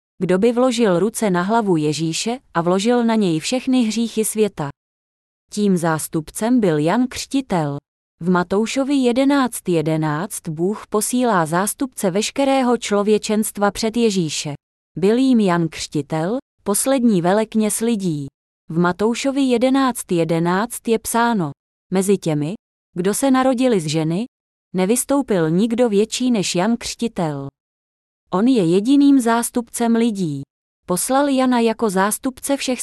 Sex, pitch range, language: female, 170-240 Hz, Czech